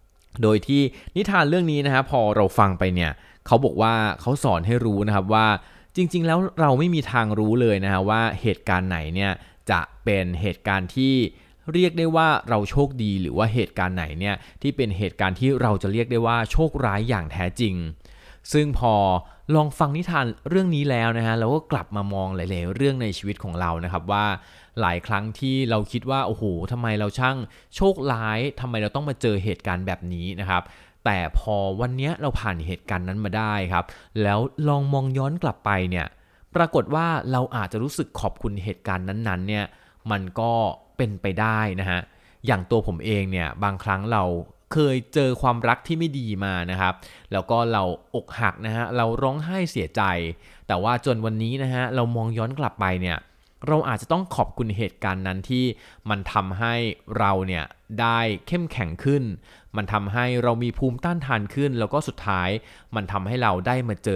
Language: Thai